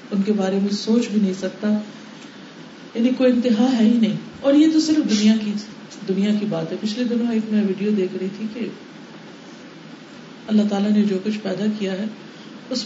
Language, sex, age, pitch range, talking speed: Urdu, female, 50-69, 200-240 Hz, 175 wpm